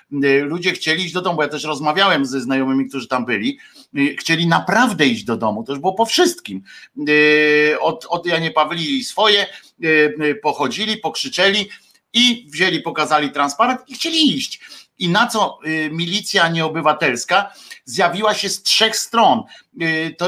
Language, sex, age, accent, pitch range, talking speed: Polish, male, 50-69, native, 150-195 Hz, 140 wpm